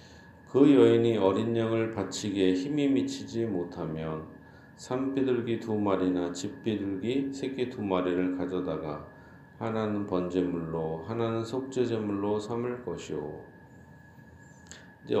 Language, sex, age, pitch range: Korean, male, 40-59, 90-125 Hz